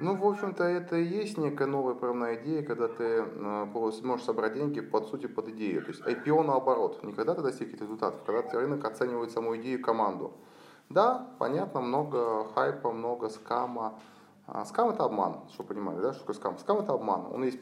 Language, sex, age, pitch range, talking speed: Russian, male, 20-39, 105-130 Hz, 195 wpm